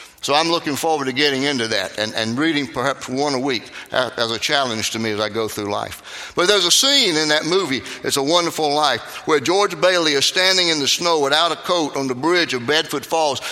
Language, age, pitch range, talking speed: English, 60-79, 125-160 Hz, 235 wpm